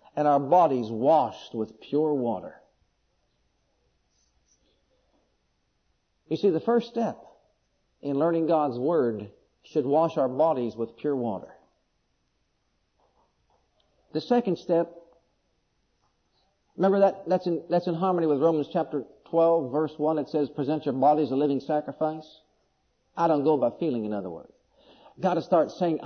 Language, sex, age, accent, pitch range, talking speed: English, male, 50-69, American, 125-165 Hz, 140 wpm